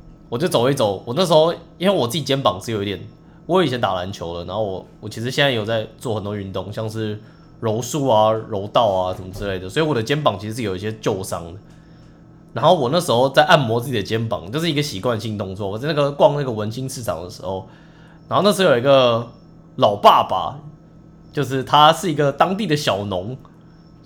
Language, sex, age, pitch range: English, male, 20-39, 105-155 Hz